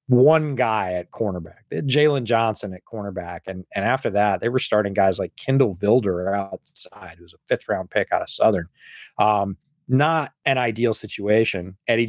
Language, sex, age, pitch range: English, male, 30-49, 105-145 Hz